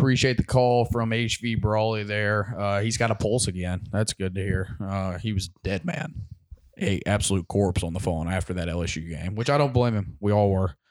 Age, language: 20-39, English